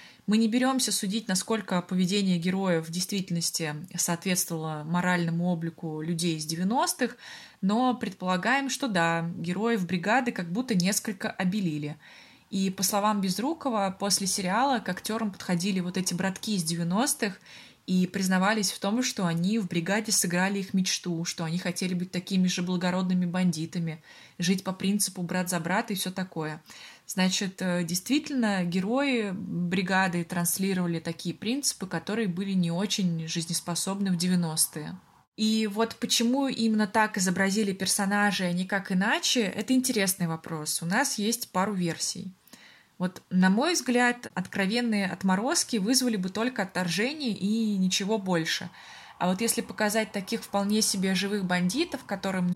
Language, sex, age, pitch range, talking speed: Russian, female, 20-39, 180-215 Hz, 140 wpm